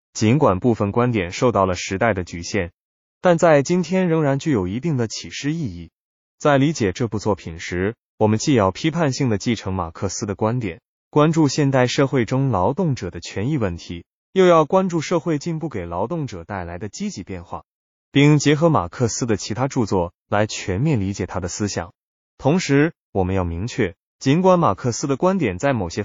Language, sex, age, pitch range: Chinese, male, 20-39, 95-150 Hz